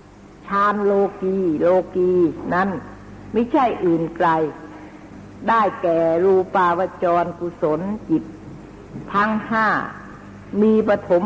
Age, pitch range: 60-79, 155-205 Hz